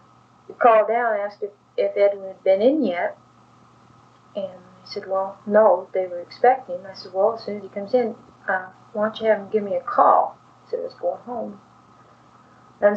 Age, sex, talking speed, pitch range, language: 30-49, female, 210 wpm, 195-230 Hz, English